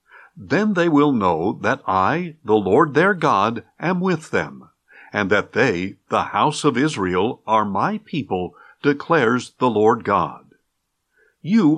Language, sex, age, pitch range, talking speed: English, male, 50-69, 115-175 Hz, 145 wpm